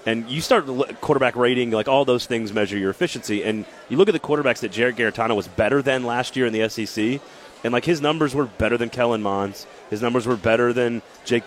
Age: 30-49